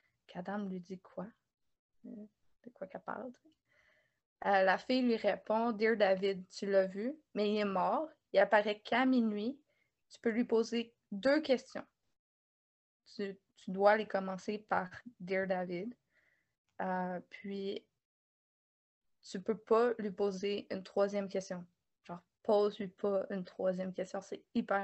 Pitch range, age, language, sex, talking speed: 195-230 Hz, 20-39, French, female, 140 wpm